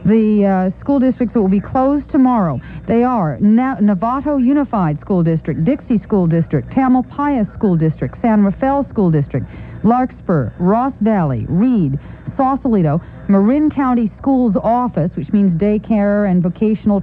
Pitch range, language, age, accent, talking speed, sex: 185-235 Hz, English, 50-69, American, 145 wpm, female